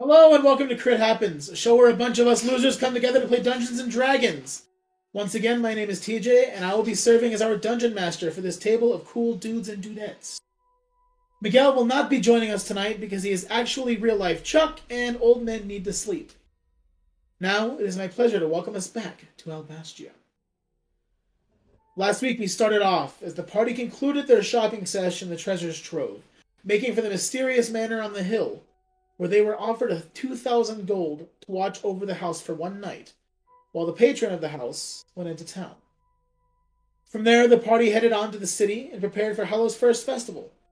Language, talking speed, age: English, 200 wpm, 30-49